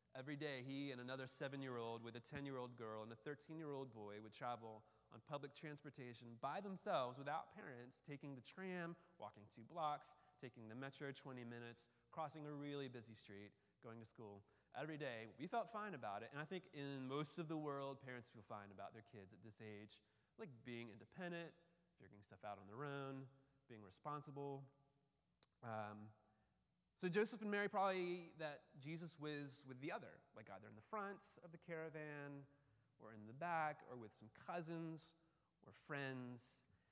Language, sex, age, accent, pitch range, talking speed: English, male, 30-49, American, 115-150 Hz, 175 wpm